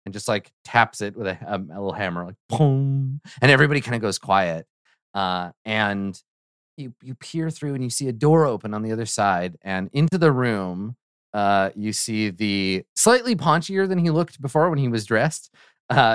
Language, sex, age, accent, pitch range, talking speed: English, male, 30-49, American, 105-135 Hz, 200 wpm